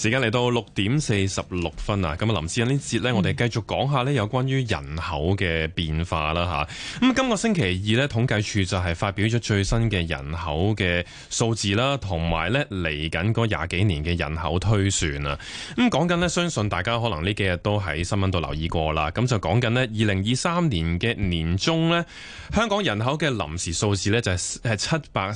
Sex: male